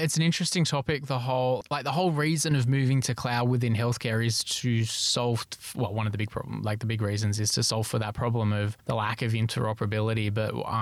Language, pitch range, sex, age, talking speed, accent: English, 110-125 Hz, male, 20-39, 235 wpm, Australian